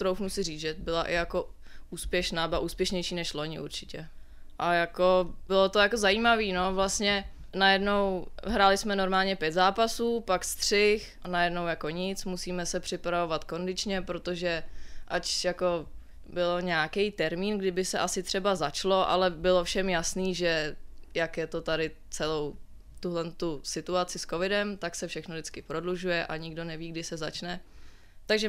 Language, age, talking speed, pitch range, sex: Czech, 20-39, 155 wpm, 170-195 Hz, female